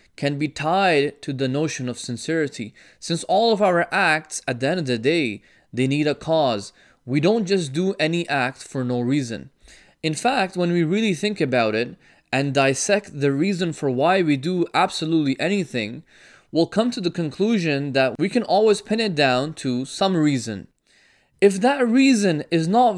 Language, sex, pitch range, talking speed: English, male, 140-190 Hz, 185 wpm